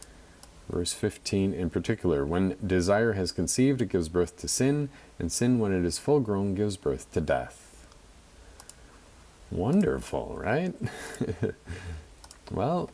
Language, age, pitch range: English, 40-59, 80-105 Hz